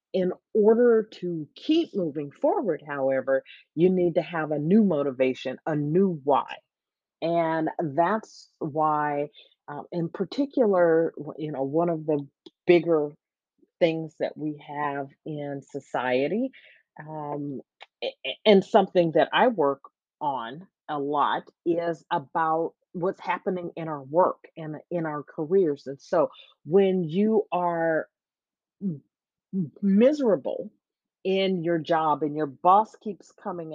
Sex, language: female, English